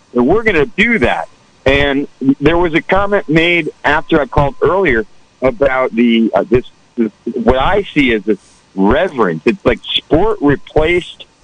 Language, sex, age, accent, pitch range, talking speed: English, male, 50-69, American, 125-190 Hz, 165 wpm